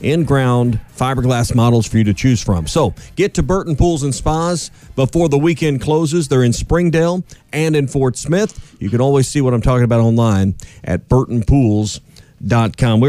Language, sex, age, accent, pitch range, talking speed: English, male, 40-59, American, 115-150 Hz, 175 wpm